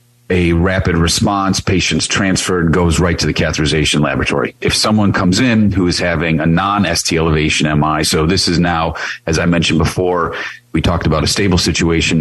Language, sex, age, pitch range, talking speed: English, male, 40-59, 80-95 Hz, 175 wpm